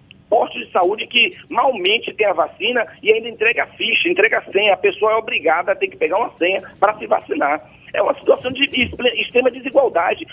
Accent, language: Brazilian, Portuguese